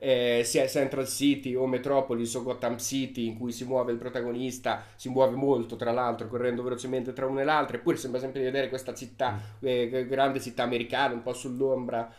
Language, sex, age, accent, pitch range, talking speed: Italian, male, 30-49, native, 120-140 Hz, 195 wpm